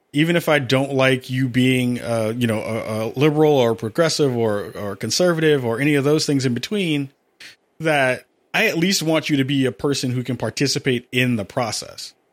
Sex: male